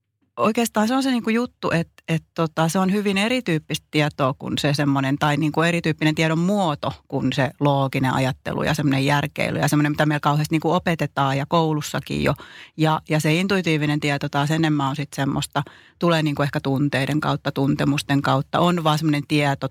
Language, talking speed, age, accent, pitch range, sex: Finnish, 185 wpm, 30-49, native, 145-180 Hz, female